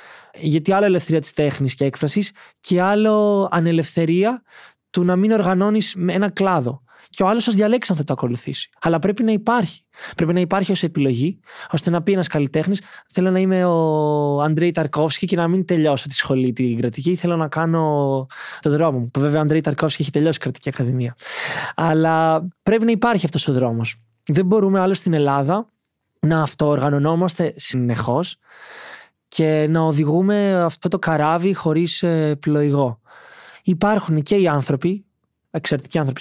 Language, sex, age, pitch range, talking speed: Greek, male, 20-39, 145-180 Hz, 160 wpm